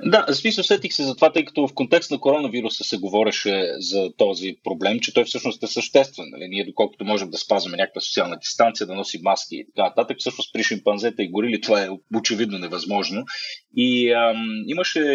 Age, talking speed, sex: 30-49, 195 wpm, male